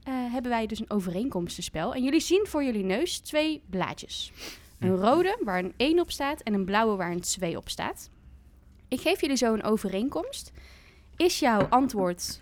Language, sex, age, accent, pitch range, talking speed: Dutch, female, 20-39, Dutch, 195-285 Hz, 185 wpm